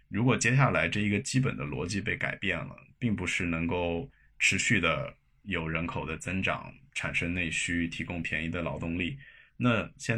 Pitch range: 85-115 Hz